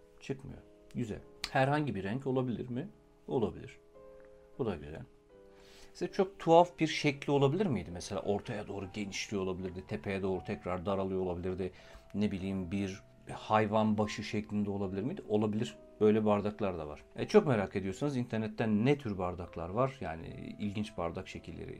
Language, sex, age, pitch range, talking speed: Turkish, male, 50-69, 95-135 Hz, 150 wpm